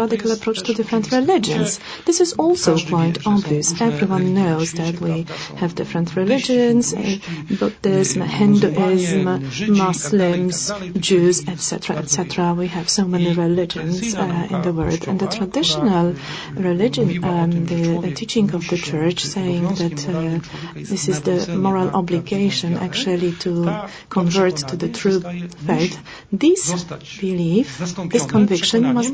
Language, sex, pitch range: English, female, 175-220 Hz